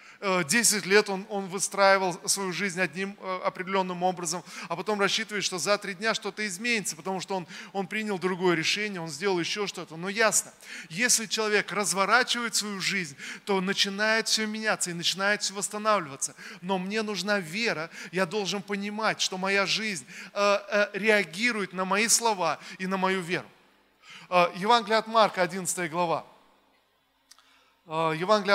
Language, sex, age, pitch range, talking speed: Russian, male, 20-39, 175-210 Hz, 145 wpm